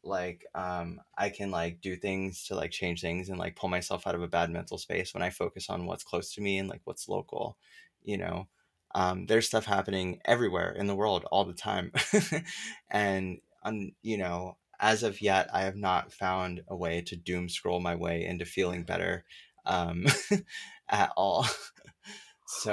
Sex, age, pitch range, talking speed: male, 20-39, 90-105 Hz, 185 wpm